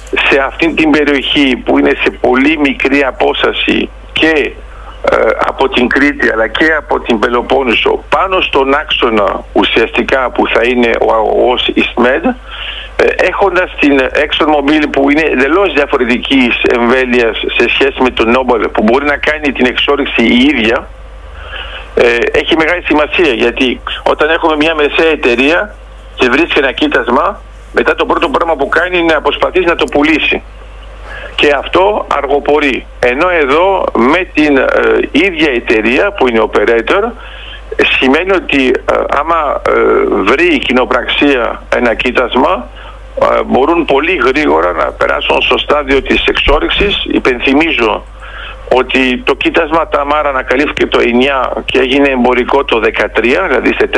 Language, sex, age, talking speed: Greek, male, 50-69, 140 wpm